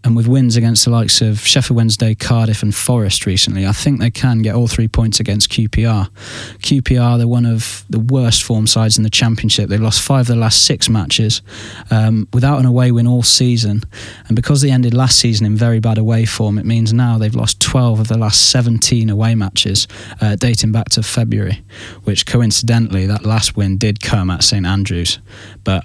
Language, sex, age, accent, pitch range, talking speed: English, male, 20-39, British, 105-115 Hz, 205 wpm